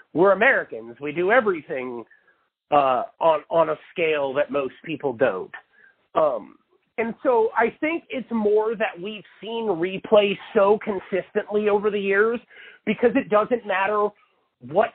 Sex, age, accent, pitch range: male, 40-59, American, 175-275 Hz